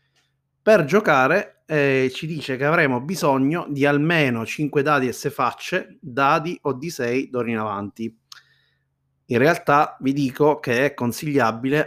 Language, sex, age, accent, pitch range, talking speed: Italian, male, 30-49, native, 125-150 Hz, 145 wpm